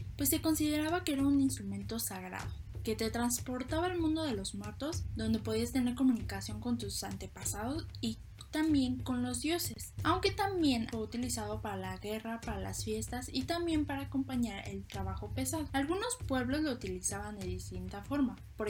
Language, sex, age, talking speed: Spanish, female, 10-29, 170 wpm